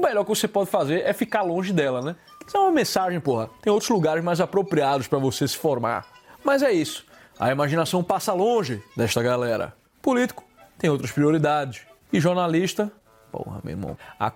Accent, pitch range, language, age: Brazilian, 130-175 Hz, Portuguese, 20-39